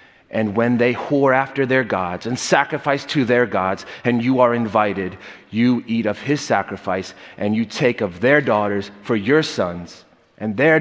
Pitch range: 110-145 Hz